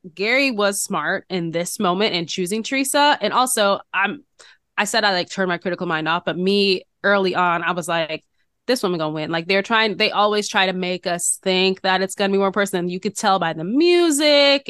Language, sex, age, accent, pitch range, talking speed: English, female, 20-39, American, 175-210 Hz, 220 wpm